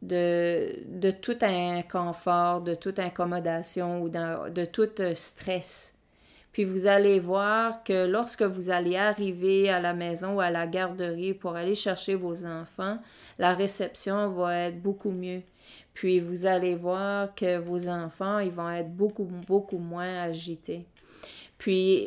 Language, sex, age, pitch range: French, female, 30-49, 175-200 Hz